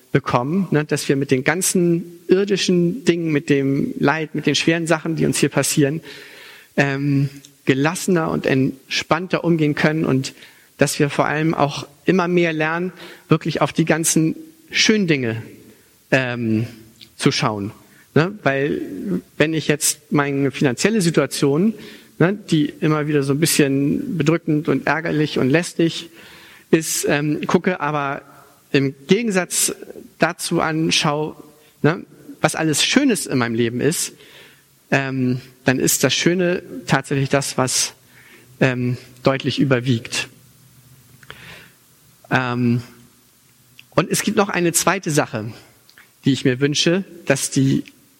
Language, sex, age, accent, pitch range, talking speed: German, male, 50-69, German, 140-170 Hz, 125 wpm